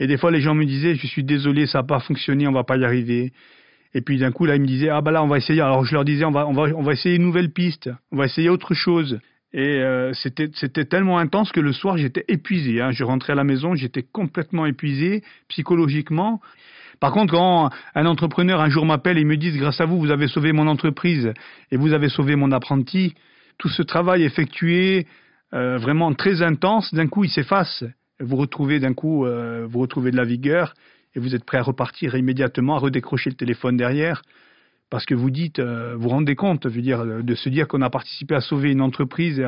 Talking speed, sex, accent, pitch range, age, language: 240 wpm, male, French, 125-160 Hz, 40-59, French